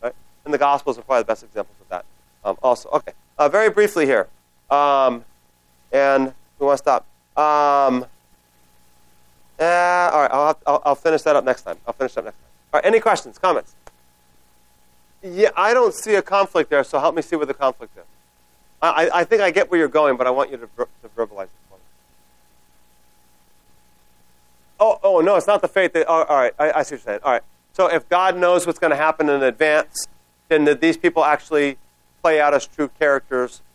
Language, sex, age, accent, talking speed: English, male, 30-49, American, 215 wpm